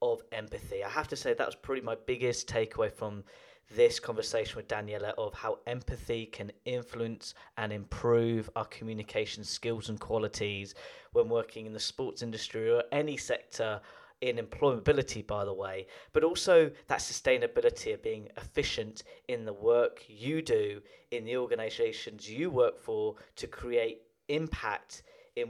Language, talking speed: English, 155 wpm